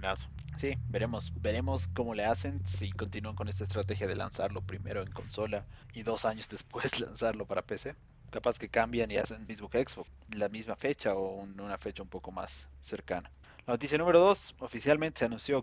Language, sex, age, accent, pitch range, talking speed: Spanish, male, 20-39, Mexican, 100-125 Hz, 190 wpm